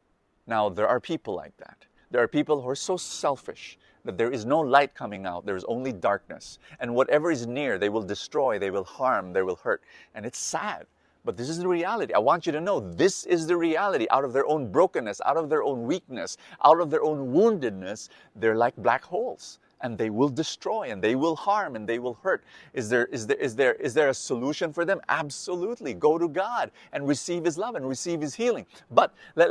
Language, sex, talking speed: English, male, 225 wpm